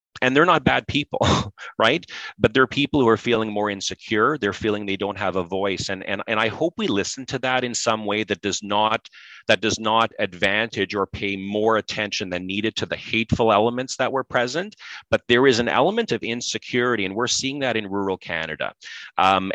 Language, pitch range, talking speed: English, 95-115 Hz, 210 wpm